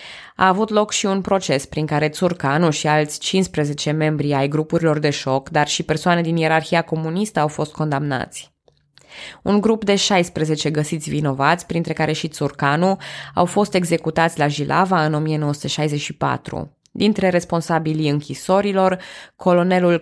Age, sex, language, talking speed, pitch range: 20-39, female, Romanian, 140 wpm, 155-190 Hz